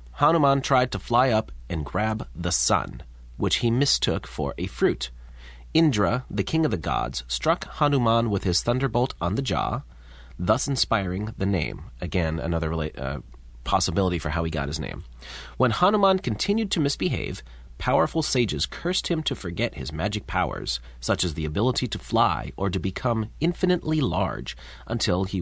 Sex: male